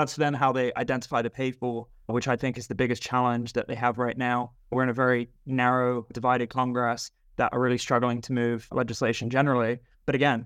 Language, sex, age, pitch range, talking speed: English, male, 20-39, 120-130 Hz, 205 wpm